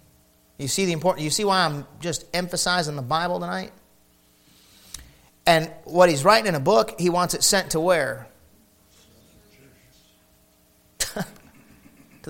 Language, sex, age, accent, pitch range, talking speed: English, male, 40-59, American, 135-175 Hz, 130 wpm